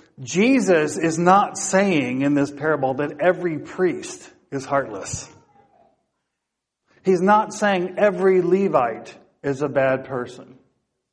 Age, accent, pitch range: 50-69, American, 150-190 Hz